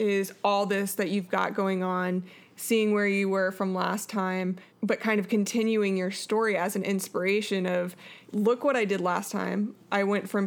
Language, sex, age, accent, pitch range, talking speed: English, female, 20-39, American, 190-210 Hz, 195 wpm